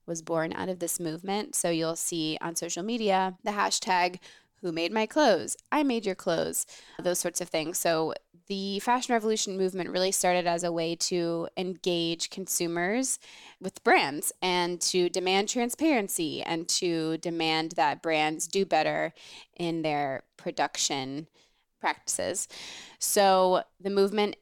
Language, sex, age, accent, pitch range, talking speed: English, female, 20-39, American, 165-200 Hz, 145 wpm